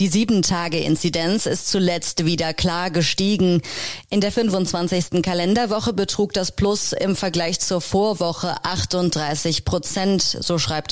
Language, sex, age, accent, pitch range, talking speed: German, female, 30-49, German, 160-210 Hz, 120 wpm